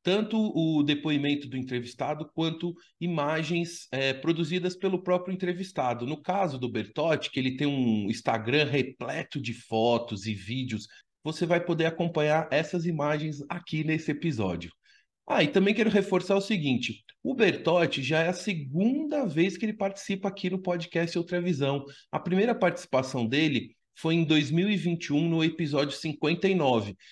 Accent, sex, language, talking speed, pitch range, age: Brazilian, male, Portuguese, 145 wpm, 125-170 Hz, 30-49